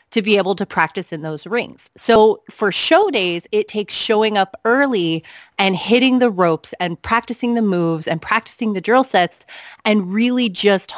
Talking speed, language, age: 180 wpm, English, 30-49